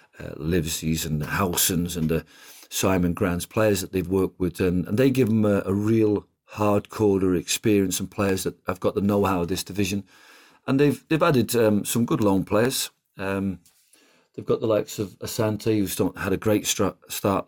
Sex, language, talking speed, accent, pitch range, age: male, English, 190 wpm, British, 85-105 Hz, 50-69